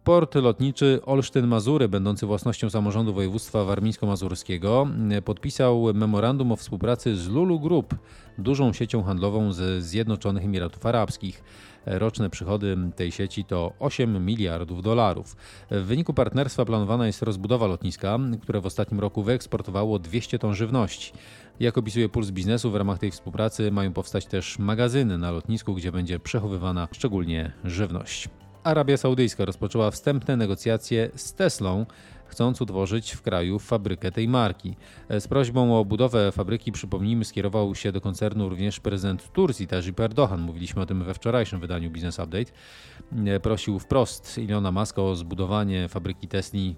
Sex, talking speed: male, 140 wpm